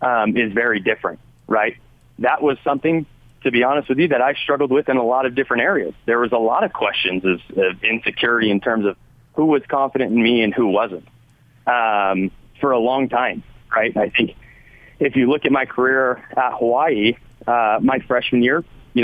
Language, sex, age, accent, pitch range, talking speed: English, male, 30-49, American, 105-130 Hz, 200 wpm